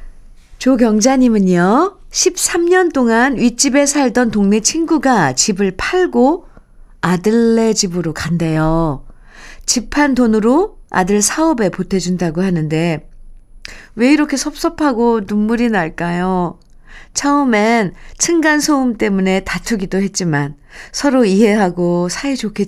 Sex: female